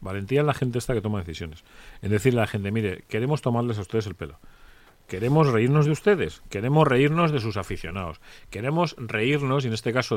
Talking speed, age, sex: 205 wpm, 40-59, male